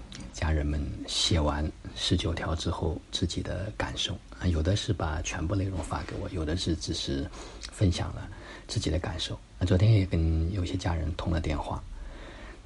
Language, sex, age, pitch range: Chinese, male, 50-69, 85-100 Hz